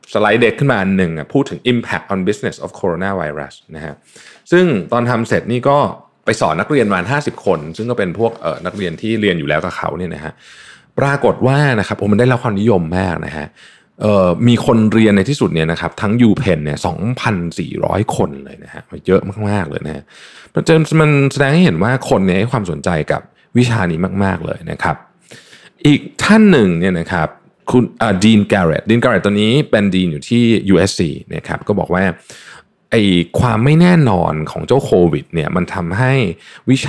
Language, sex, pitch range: Thai, male, 90-130 Hz